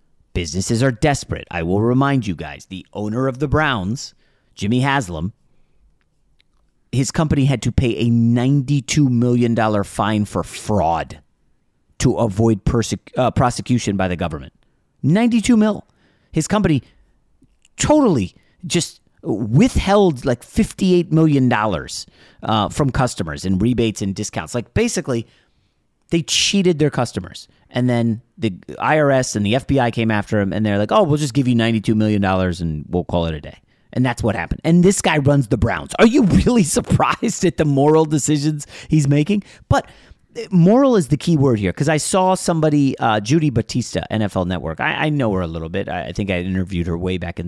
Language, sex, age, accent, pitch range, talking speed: English, male, 30-49, American, 95-145 Hz, 175 wpm